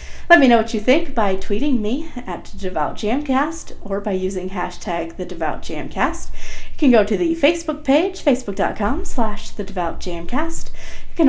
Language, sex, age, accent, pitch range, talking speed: English, female, 30-49, American, 185-280 Hz, 160 wpm